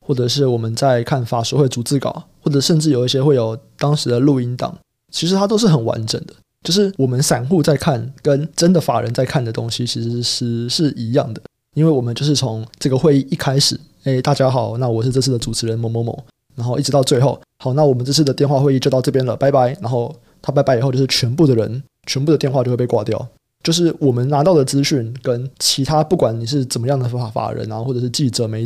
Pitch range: 120-150 Hz